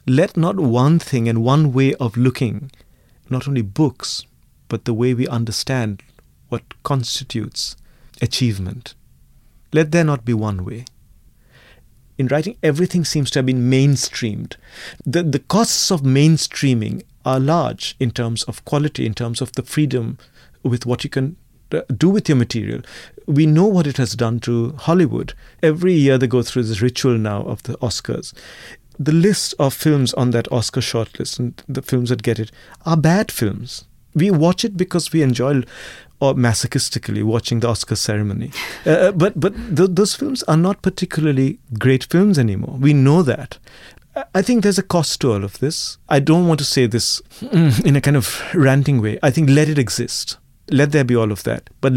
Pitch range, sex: 120-155 Hz, male